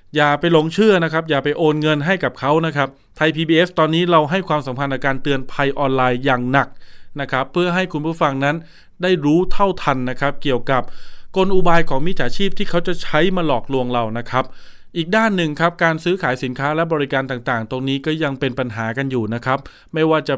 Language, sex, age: Thai, male, 20-39